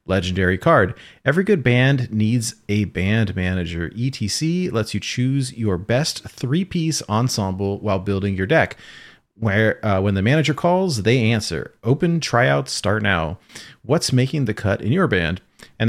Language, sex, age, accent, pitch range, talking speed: English, male, 40-59, American, 100-130 Hz, 160 wpm